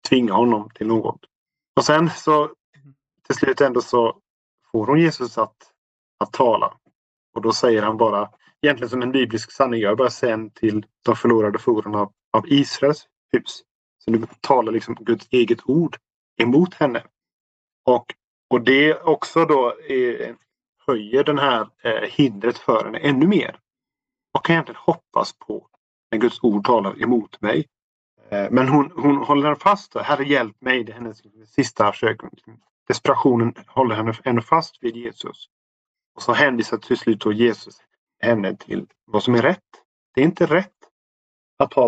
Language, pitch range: Swedish, 110-145 Hz